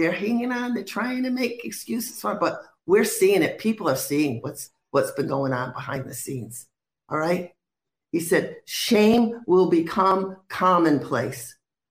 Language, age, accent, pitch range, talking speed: English, 50-69, American, 135-195 Hz, 160 wpm